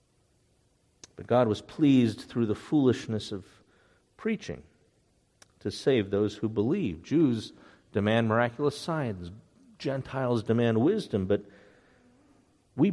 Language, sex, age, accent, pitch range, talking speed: English, male, 50-69, American, 110-145 Hz, 105 wpm